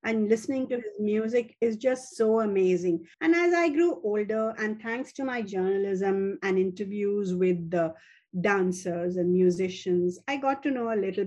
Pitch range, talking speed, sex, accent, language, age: 195-270 Hz, 170 wpm, female, Indian, English, 50-69